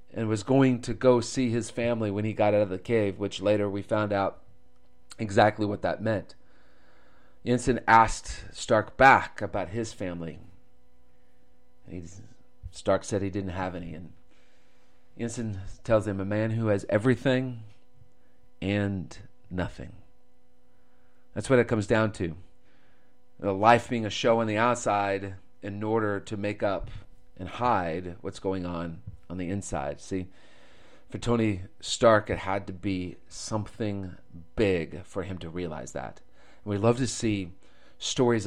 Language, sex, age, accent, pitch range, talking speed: English, male, 40-59, American, 95-115 Hz, 150 wpm